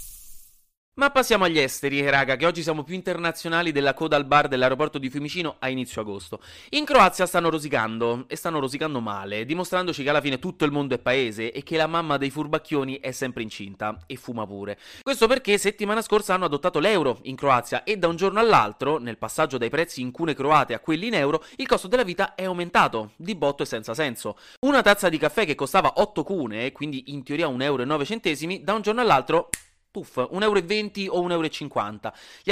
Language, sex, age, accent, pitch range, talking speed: Italian, male, 30-49, native, 140-195 Hz, 200 wpm